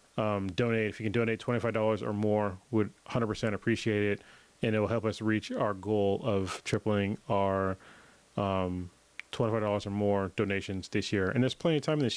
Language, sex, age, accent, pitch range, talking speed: English, male, 30-49, American, 105-120 Hz, 190 wpm